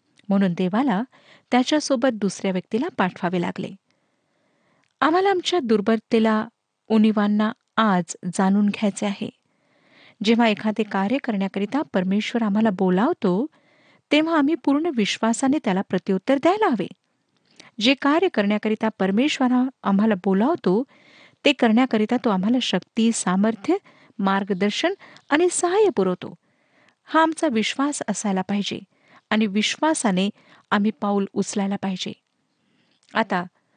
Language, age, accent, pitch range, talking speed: Marathi, 50-69, native, 200-275 Hz, 105 wpm